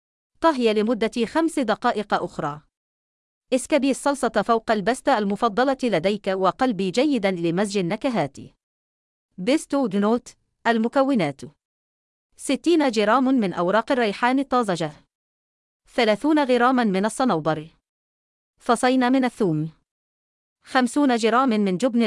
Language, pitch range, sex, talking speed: English, 180-255 Hz, female, 95 wpm